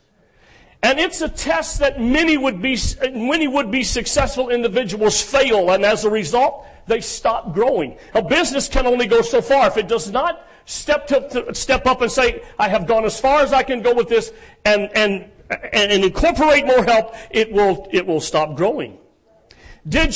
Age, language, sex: 50-69, English, male